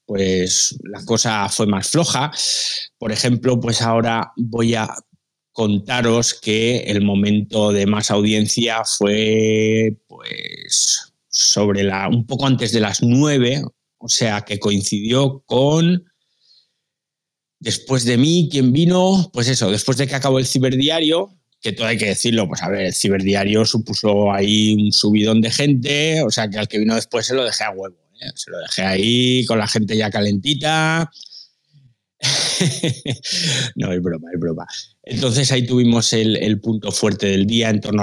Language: Spanish